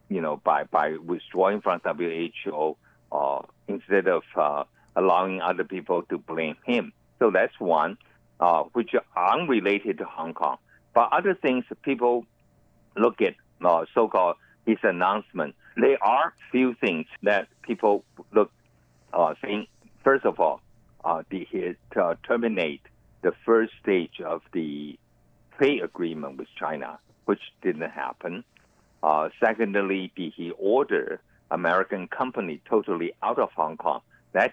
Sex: male